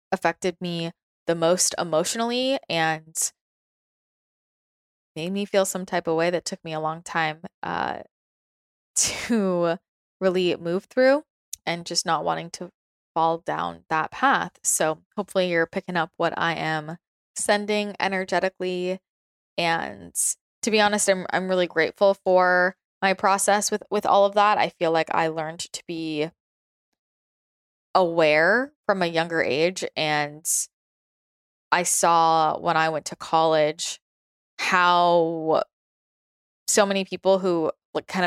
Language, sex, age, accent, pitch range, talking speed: English, female, 20-39, American, 160-190 Hz, 135 wpm